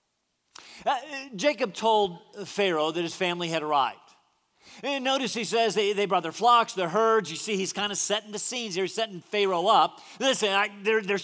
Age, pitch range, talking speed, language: 40-59, 180-240 Hz, 185 wpm, English